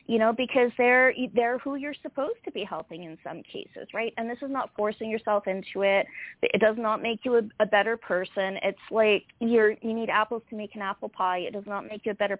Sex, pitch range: female, 195-235 Hz